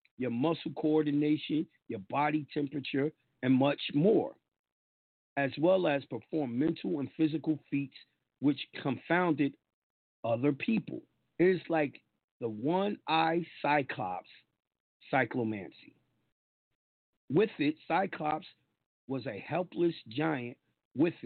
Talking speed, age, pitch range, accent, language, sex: 100 wpm, 50-69, 130-160 Hz, American, English, male